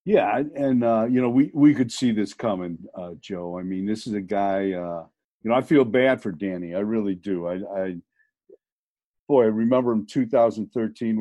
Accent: American